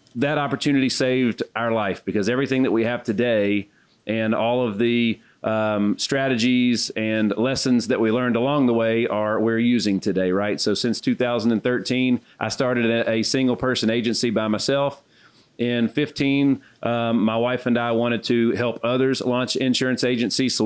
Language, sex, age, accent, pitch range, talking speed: English, male, 40-59, American, 115-130 Hz, 160 wpm